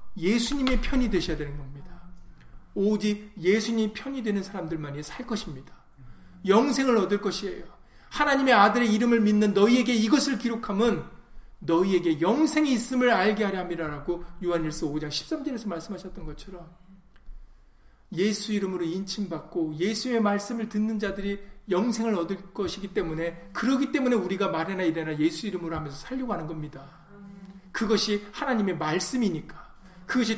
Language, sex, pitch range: Korean, male, 165-215 Hz